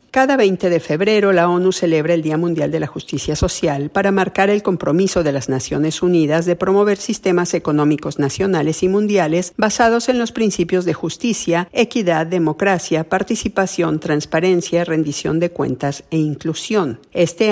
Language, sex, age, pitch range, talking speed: Spanish, female, 50-69, 160-195 Hz, 155 wpm